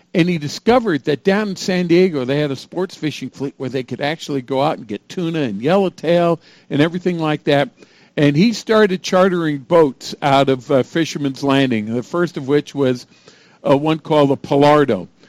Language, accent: English, American